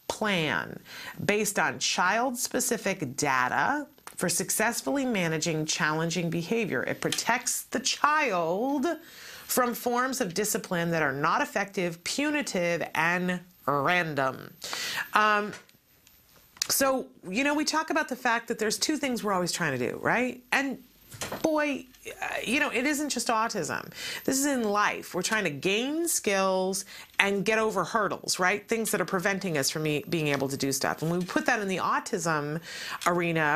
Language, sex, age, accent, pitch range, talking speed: English, female, 40-59, American, 180-245 Hz, 155 wpm